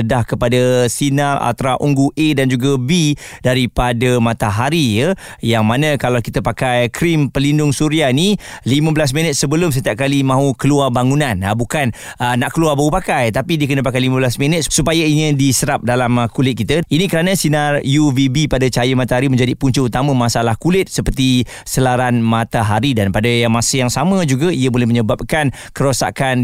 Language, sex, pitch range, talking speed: Malay, male, 120-145 Hz, 170 wpm